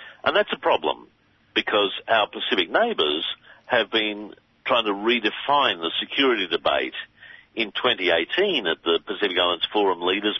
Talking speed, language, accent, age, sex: 140 wpm, English, Australian, 50-69, male